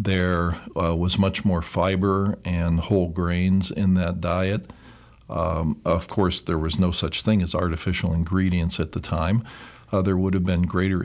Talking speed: 175 wpm